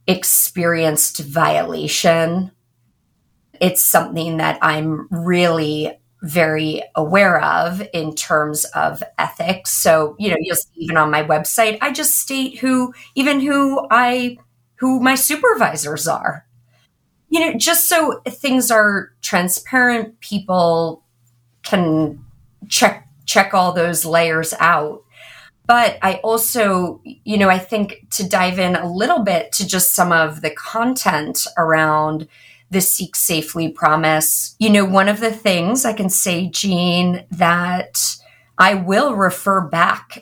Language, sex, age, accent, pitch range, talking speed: English, female, 30-49, American, 155-205 Hz, 130 wpm